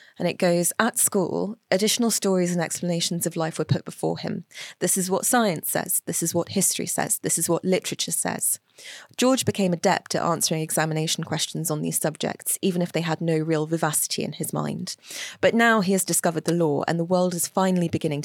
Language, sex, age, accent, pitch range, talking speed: English, female, 20-39, British, 160-185 Hz, 205 wpm